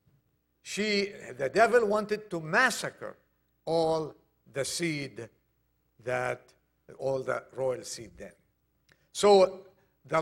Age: 60-79